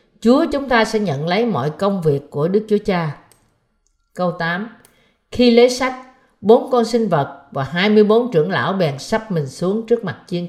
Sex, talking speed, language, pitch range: female, 190 wpm, Vietnamese, 155-220 Hz